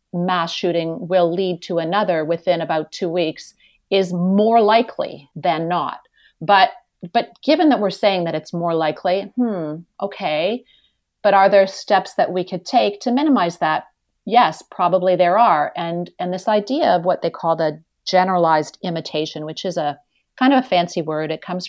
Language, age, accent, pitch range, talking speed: English, 40-59, American, 165-200 Hz, 175 wpm